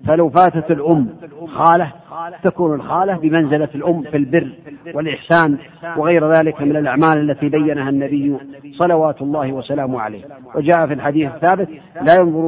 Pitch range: 155-175 Hz